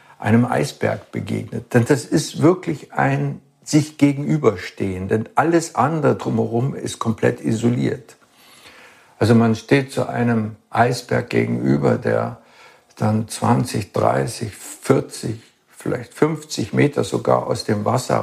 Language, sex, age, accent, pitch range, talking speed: German, male, 60-79, German, 110-125 Hz, 120 wpm